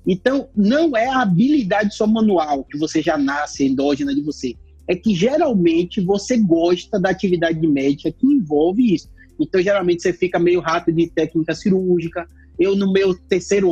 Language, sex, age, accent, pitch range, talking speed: Spanish, male, 30-49, Brazilian, 165-230 Hz, 170 wpm